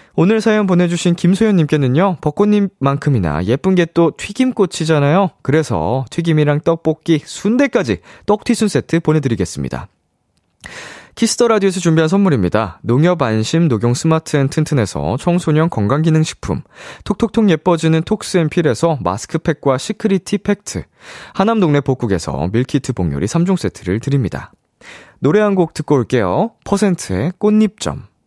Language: Korean